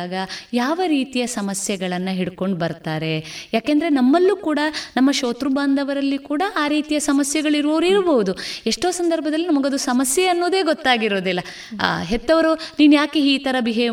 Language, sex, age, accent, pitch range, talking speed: Kannada, female, 20-39, native, 205-295 Hz, 115 wpm